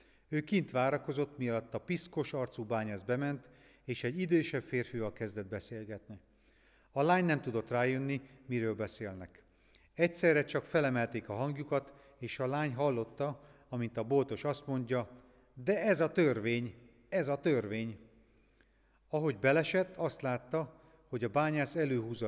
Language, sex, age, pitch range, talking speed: Hungarian, male, 40-59, 110-145 Hz, 135 wpm